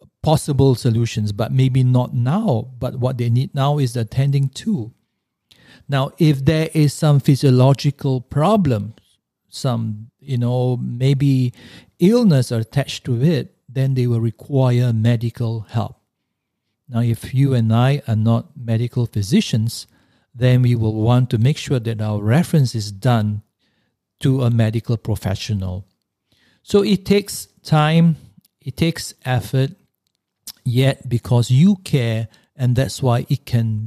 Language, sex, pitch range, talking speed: English, male, 115-145 Hz, 135 wpm